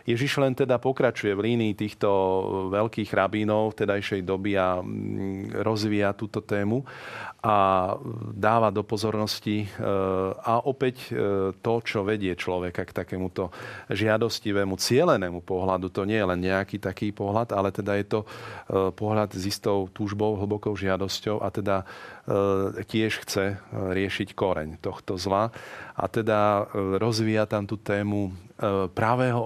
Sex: male